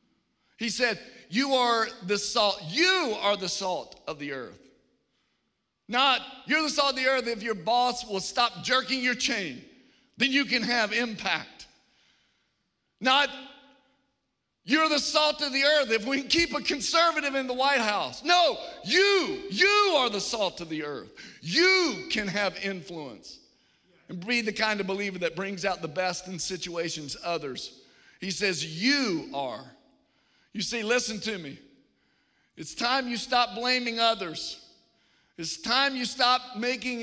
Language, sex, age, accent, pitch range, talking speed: English, male, 50-69, American, 205-270 Hz, 155 wpm